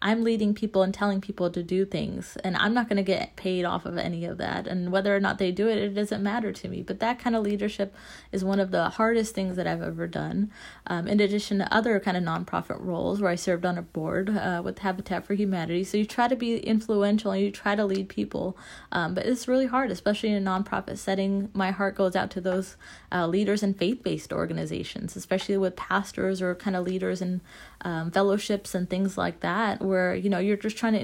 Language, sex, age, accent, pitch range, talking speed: English, female, 30-49, American, 185-210 Hz, 240 wpm